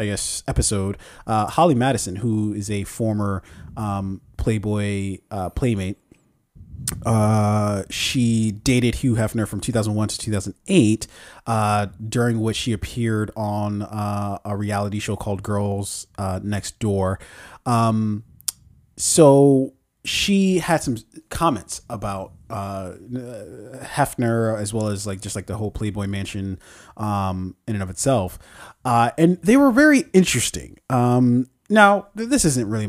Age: 30-49